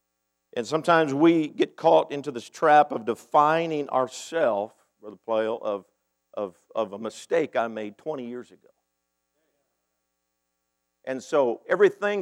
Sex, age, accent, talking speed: male, 50-69, American, 135 wpm